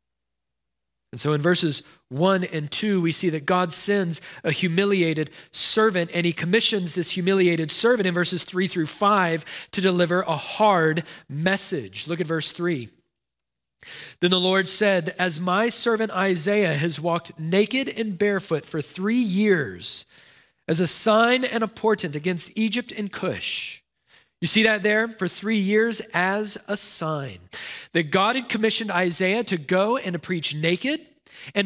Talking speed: 155 wpm